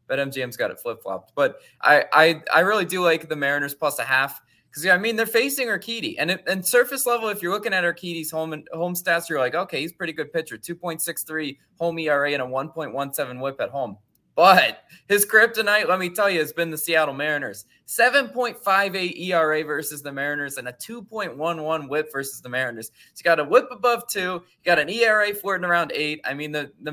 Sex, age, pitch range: male, 20-39, 145-190 Hz